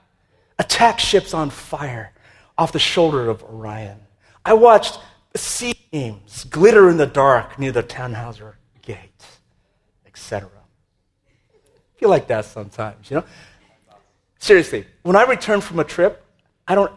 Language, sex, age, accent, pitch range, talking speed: English, male, 40-59, American, 110-175 Hz, 135 wpm